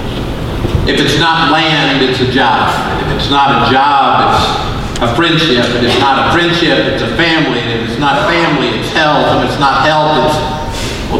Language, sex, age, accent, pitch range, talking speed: English, male, 50-69, American, 120-165 Hz, 215 wpm